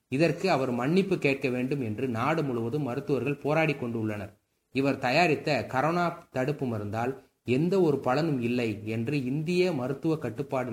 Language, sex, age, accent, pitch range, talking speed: Tamil, male, 20-39, native, 115-150 Hz, 135 wpm